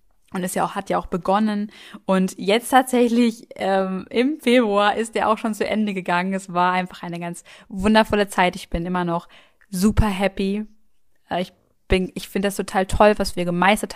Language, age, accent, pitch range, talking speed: German, 20-39, German, 180-205 Hz, 185 wpm